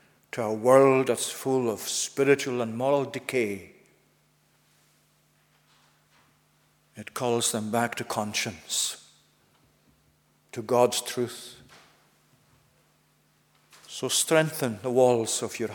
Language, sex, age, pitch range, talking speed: English, male, 50-69, 120-140 Hz, 95 wpm